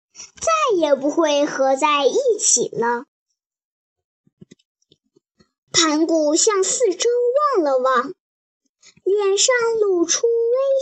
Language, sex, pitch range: Chinese, male, 280-430 Hz